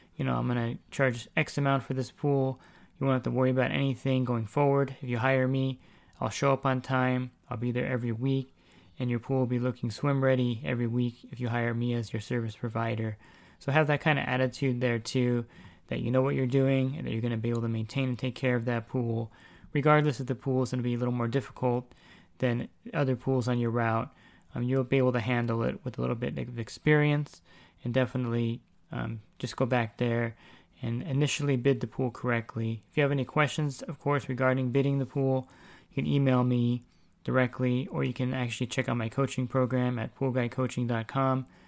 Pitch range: 120-135 Hz